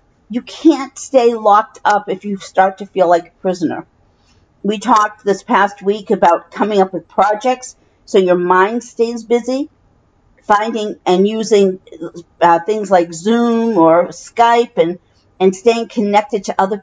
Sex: female